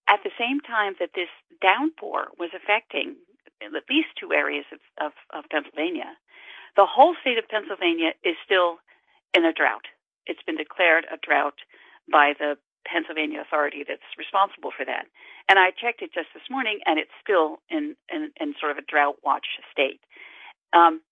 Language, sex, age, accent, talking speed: English, female, 50-69, American, 160 wpm